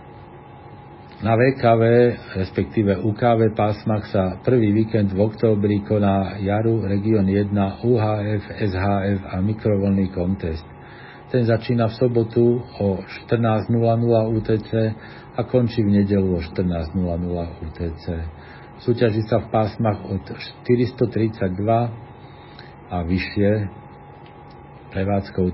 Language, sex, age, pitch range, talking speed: Slovak, male, 50-69, 95-115 Hz, 100 wpm